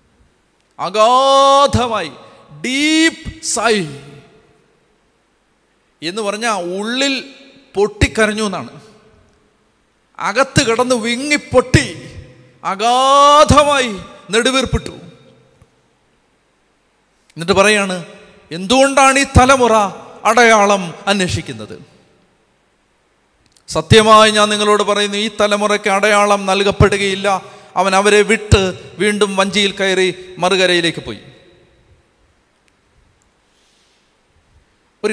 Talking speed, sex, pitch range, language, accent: 60 wpm, male, 180-245 Hz, Malayalam, native